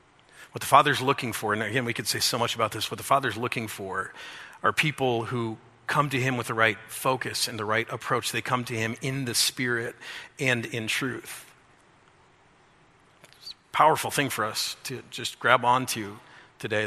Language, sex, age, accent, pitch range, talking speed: English, male, 40-59, American, 125-180 Hz, 190 wpm